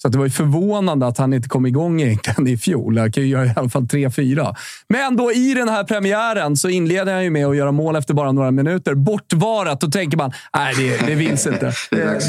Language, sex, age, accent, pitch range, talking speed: Swedish, male, 30-49, native, 130-175 Hz, 240 wpm